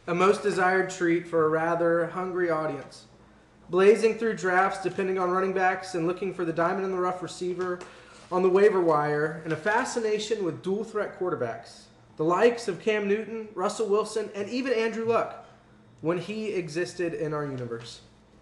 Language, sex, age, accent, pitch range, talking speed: English, male, 20-39, American, 130-205 Hz, 175 wpm